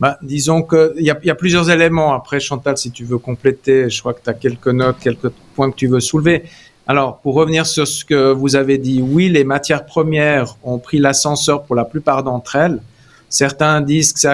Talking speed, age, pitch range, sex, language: 220 wpm, 50-69, 135-165 Hz, male, French